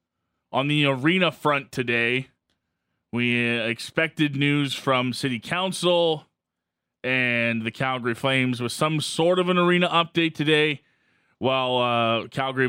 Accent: American